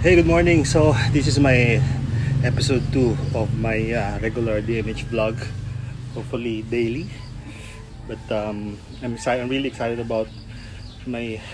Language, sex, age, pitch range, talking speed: English, male, 20-39, 105-125 Hz, 135 wpm